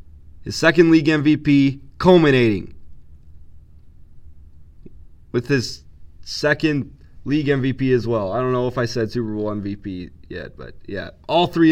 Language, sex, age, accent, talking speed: English, male, 30-49, American, 135 wpm